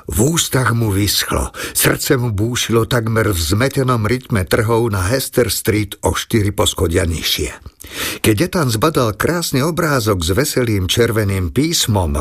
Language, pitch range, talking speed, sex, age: Slovak, 100-130 Hz, 140 wpm, male, 50-69